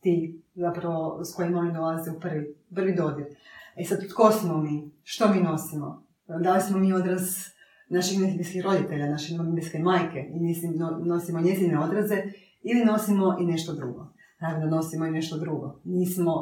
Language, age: Croatian, 30-49